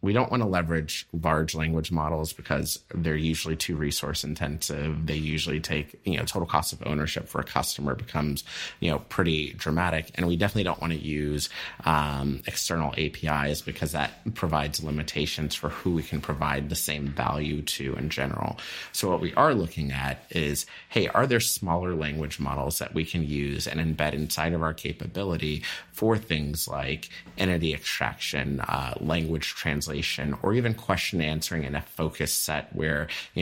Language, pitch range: English, 75-85 Hz